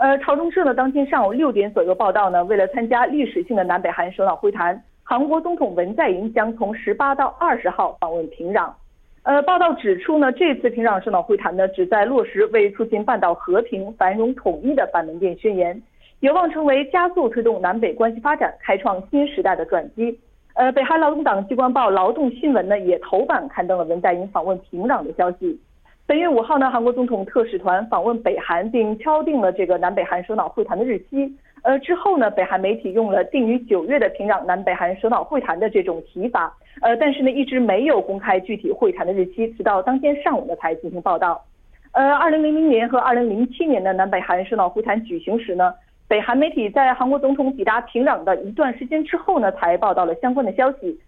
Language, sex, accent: Korean, female, Chinese